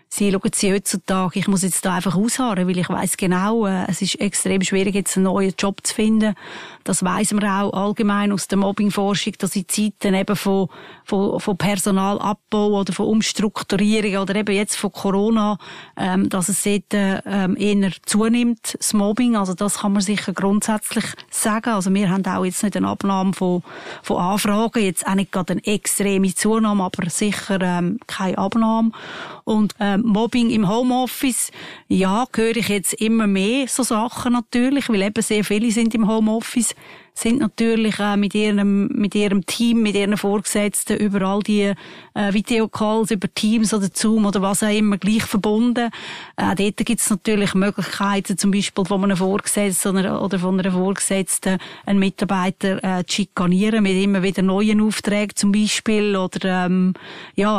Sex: female